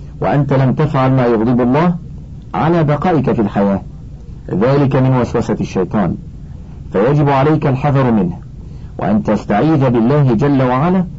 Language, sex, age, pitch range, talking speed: Arabic, male, 50-69, 115-145 Hz, 125 wpm